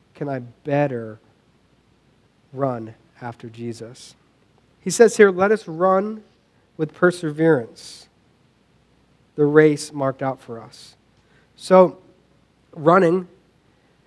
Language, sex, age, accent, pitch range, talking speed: English, male, 40-59, American, 135-175 Hz, 95 wpm